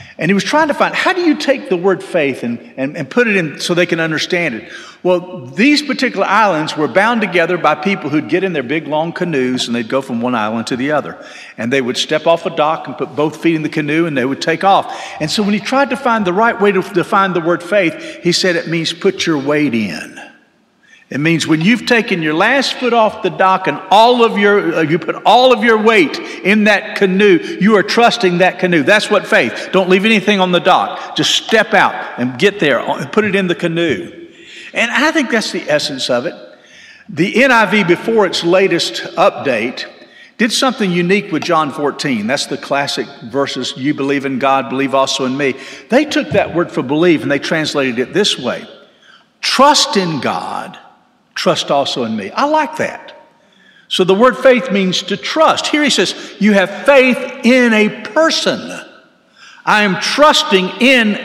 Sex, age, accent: male, 50-69, American